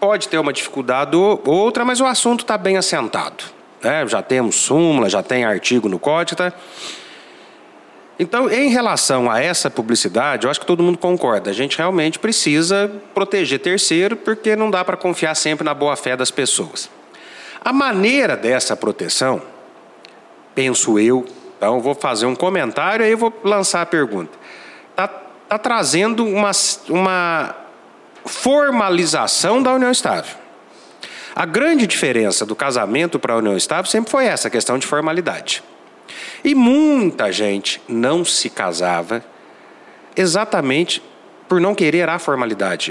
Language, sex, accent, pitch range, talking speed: Portuguese, male, Brazilian, 140-225 Hz, 150 wpm